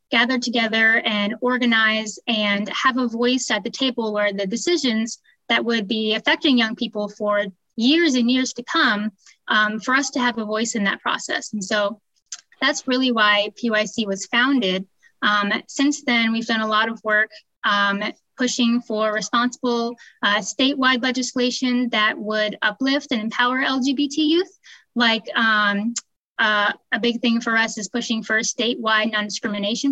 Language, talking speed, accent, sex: English, 160 wpm, American, female